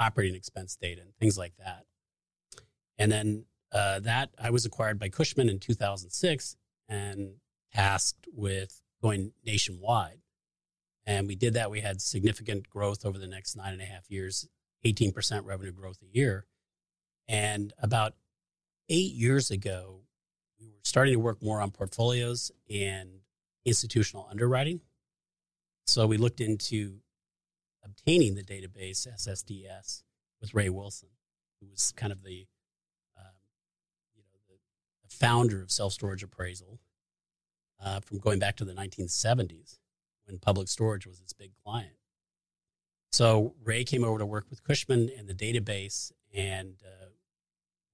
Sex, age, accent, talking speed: male, 30-49, American, 140 wpm